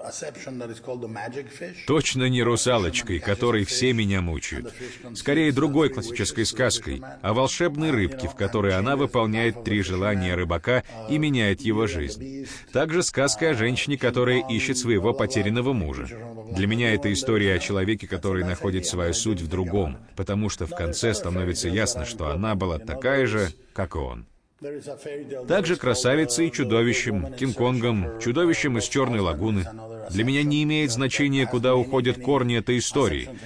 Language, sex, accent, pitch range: Russian, male, native, 100-130 Hz